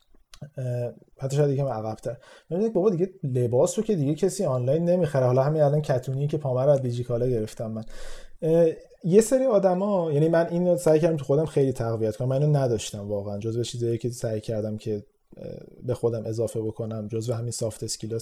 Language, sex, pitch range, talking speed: Persian, male, 125-165 Hz, 180 wpm